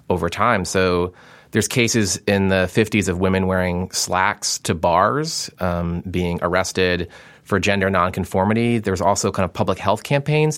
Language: English